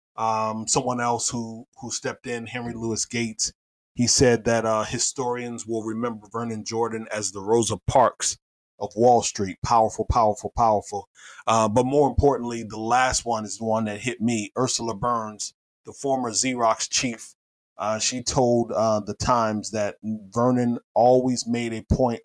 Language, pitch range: English, 110-125 Hz